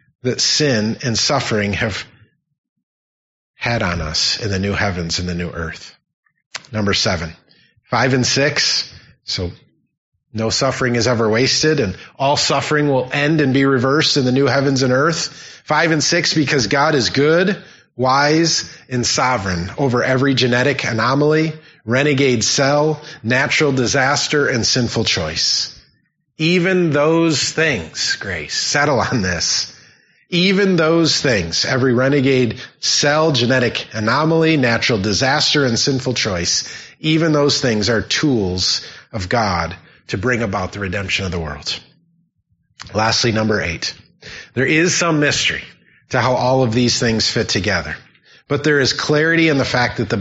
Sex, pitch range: male, 110-150 Hz